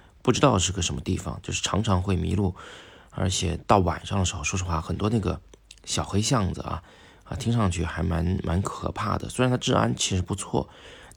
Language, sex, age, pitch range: Chinese, male, 20-39, 85-100 Hz